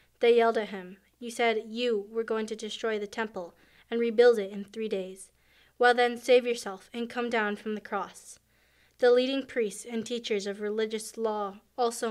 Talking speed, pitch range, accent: 190 wpm, 210-240 Hz, American